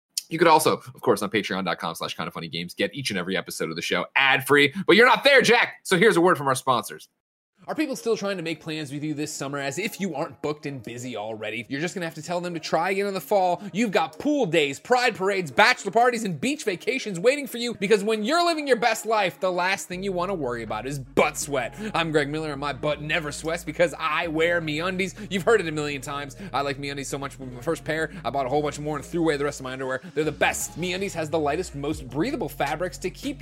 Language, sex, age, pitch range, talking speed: English, male, 30-49, 145-210 Hz, 265 wpm